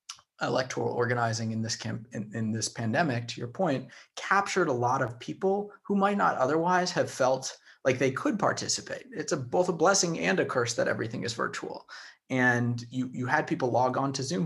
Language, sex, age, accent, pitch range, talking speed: English, male, 30-49, American, 115-145 Hz, 200 wpm